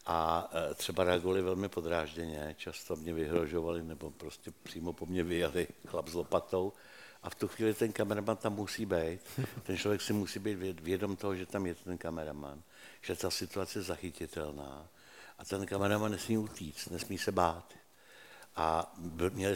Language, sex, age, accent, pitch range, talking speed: Czech, male, 70-89, native, 85-105 Hz, 165 wpm